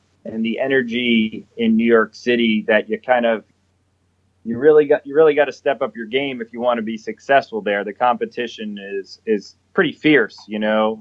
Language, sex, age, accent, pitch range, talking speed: English, male, 30-49, American, 100-120 Hz, 200 wpm